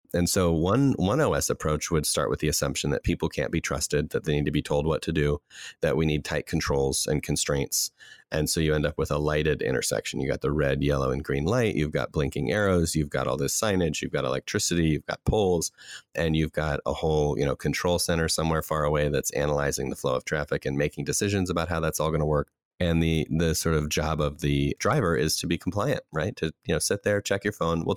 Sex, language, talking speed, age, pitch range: male, English, 245 wpm, 30-49, 75-85 Hz